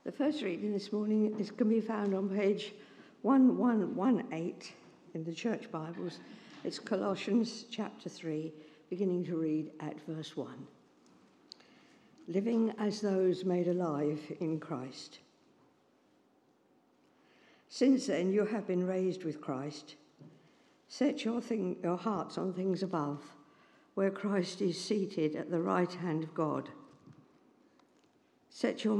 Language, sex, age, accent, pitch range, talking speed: English, female, 60-79, British, 160-205 Hz, 125 wpm